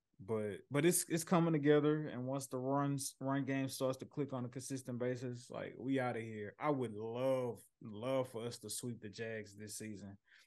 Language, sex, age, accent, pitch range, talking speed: English, male, 20-39, American, 105-130 Hz, 205 wpm